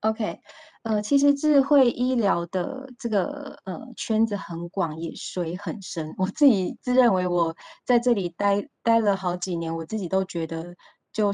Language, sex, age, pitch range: Chinese, female, 20-39, 175-220 Hz